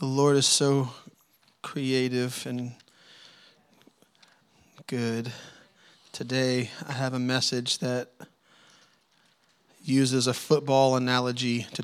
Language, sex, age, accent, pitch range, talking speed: English, male, 30-49, American, 125-145 Hz, 90 wpm